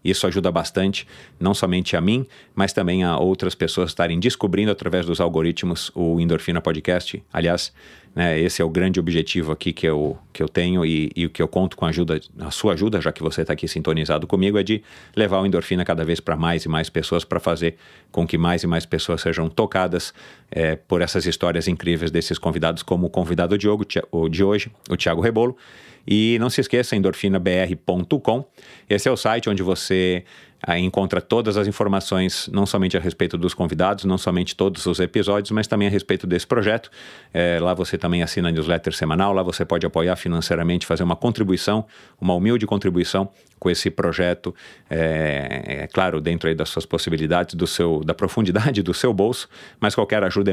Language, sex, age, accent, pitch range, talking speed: Portuguese, male, 40-59, Brazilian, 85-95 Hz, 190 wpm